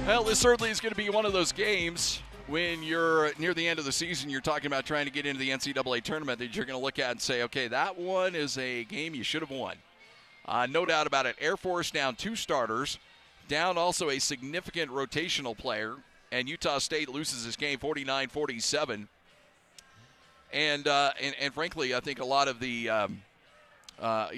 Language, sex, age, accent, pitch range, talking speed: English, male, 40-59, American, 125-150 Hz, 205 wpm